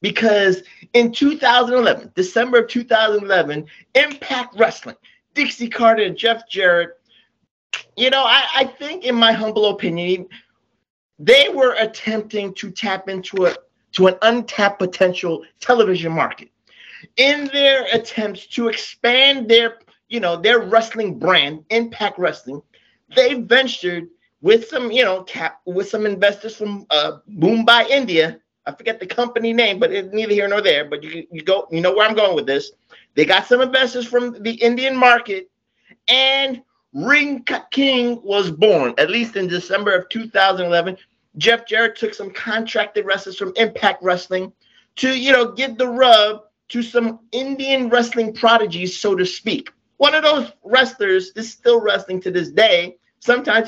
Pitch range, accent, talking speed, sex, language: 195-245 Hz, American, 150 wpm, male, English